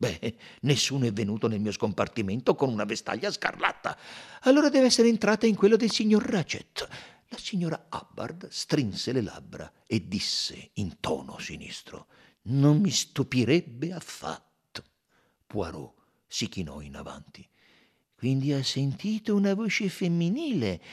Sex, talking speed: male, 130 wpm